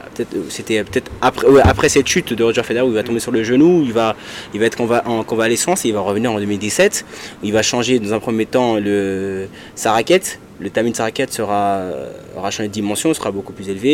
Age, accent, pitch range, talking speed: 20-39, French, 100-120 Hz, 235 wpm